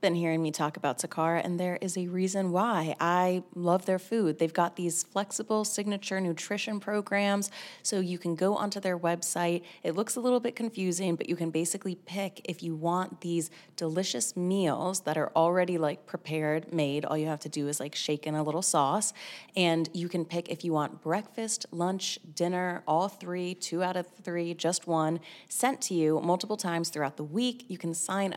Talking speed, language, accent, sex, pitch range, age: 200 wpm, English, American, female, 165-190 Hz, 30-49